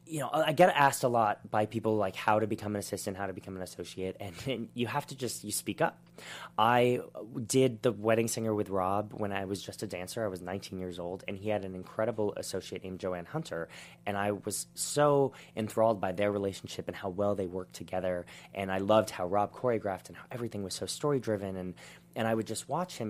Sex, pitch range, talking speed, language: male, 95-110 Hz, 235 wpm, English